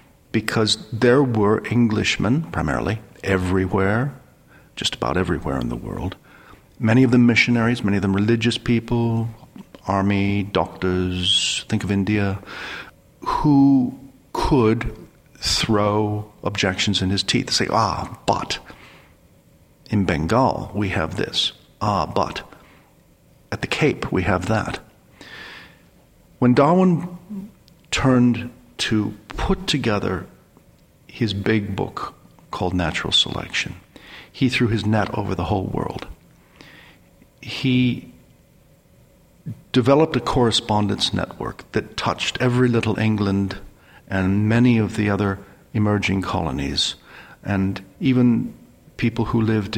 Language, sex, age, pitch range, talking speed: English, male, 50-69, 100-125 Hz, 110 wpm